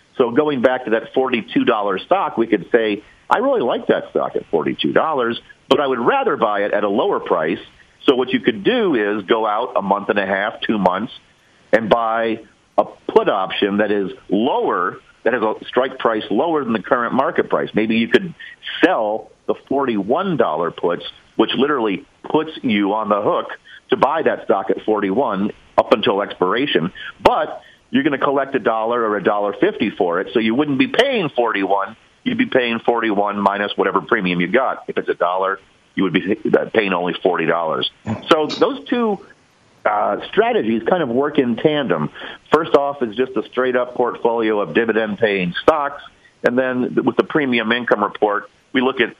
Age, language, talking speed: 50-69, English, 190 wpm